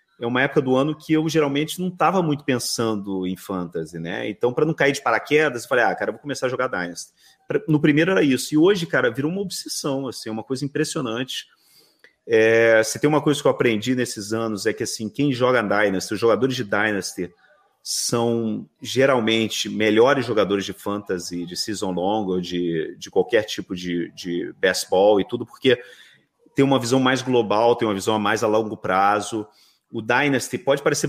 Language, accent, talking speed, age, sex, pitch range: Portuguese, Brazilian, 190 wpm, 30-49, male, 105-140 Hz